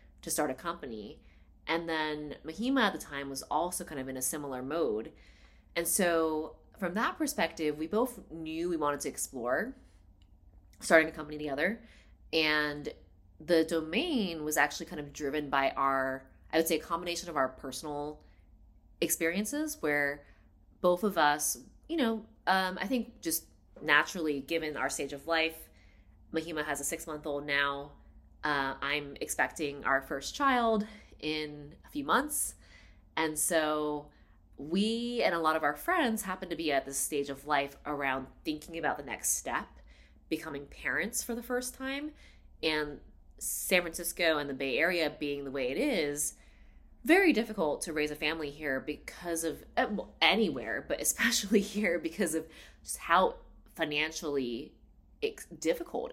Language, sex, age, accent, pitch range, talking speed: English, female, 20-39, American, 135-170 Hz, 155 wpm